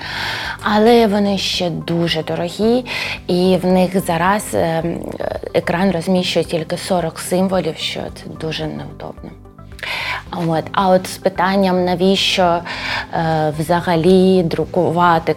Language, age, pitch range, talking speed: Ukrainian, 20-39, 160-190 Hz, 100 wpm